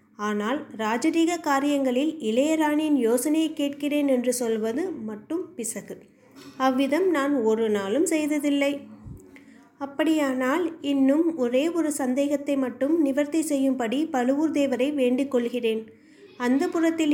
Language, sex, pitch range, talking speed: Tamil, female, 230-290 Hz, 100 wpm